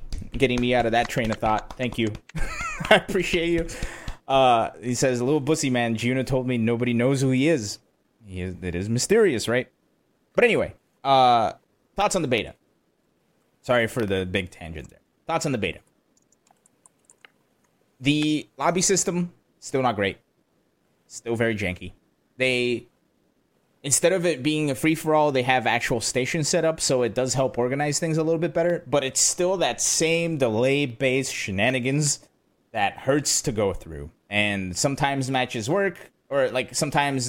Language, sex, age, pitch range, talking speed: English, male, 20-39, 110-145 Hz, 165 wpm